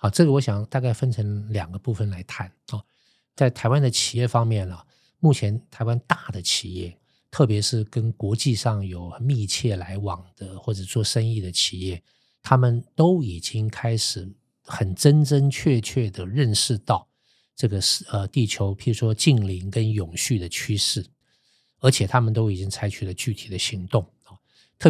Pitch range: 100-125 Hz